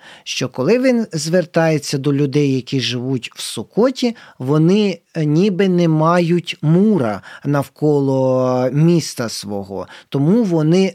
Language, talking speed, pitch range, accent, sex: Ukrainian, 110 wpm, 145-190 Hz, native, male